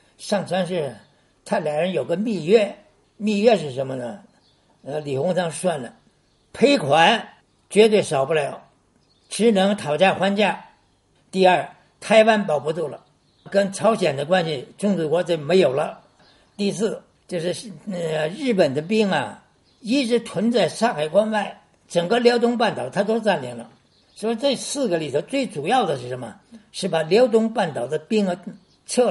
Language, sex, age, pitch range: Chinese, male, 60-79, 175-230 Hz